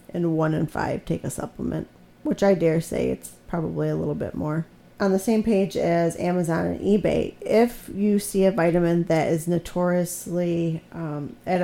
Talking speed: 180 wpm